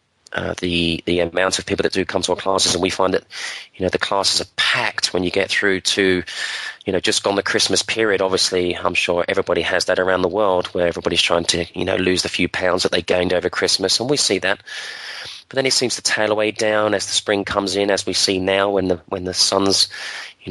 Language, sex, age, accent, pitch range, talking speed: English, male, 20-39, British, 95-105 Hz, 250 wpm